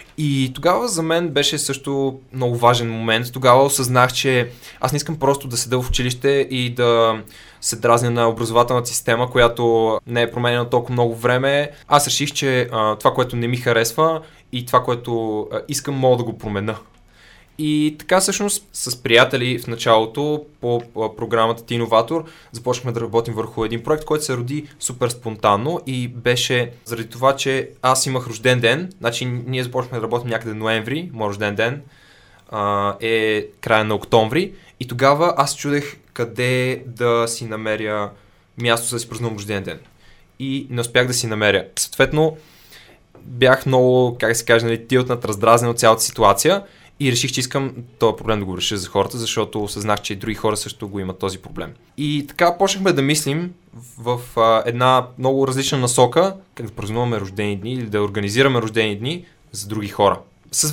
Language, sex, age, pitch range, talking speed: Bulgarian, male, 20-39, 115-140 Hz, 170 wpm